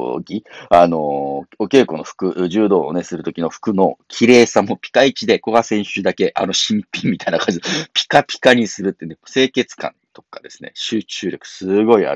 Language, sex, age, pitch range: Japanese, male, 40-59, 90-130 Hz